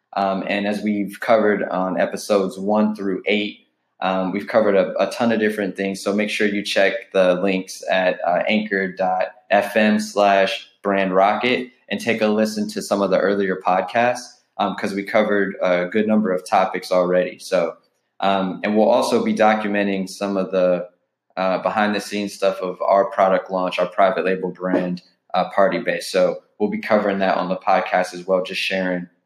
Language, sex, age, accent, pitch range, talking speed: English, male, 20-39, American, 95-105 Hz, 185 wpm